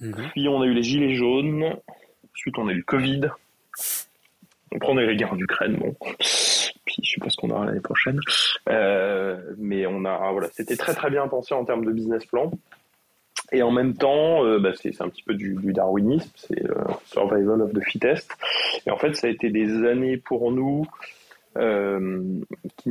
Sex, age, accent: male, 20-39, French